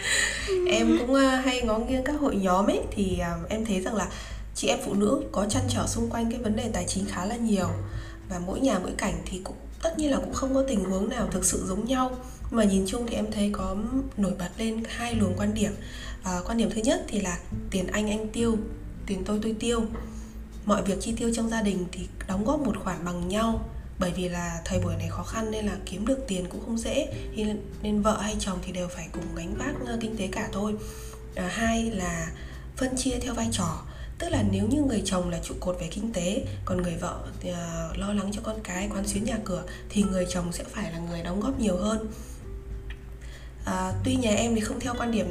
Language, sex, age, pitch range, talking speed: Vietnamese, female, 20-39, 175-225 Hz, 235 wpm